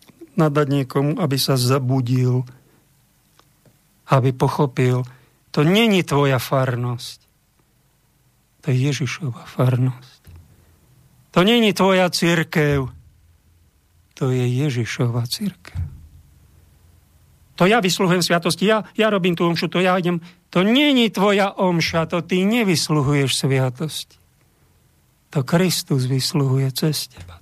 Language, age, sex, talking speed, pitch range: Slovak, 50-69, male, 105 wpm, 130-170 Hz